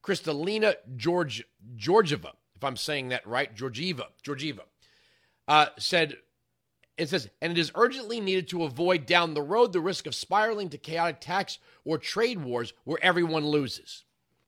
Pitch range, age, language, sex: 145-195 Hz, 40-59, English, male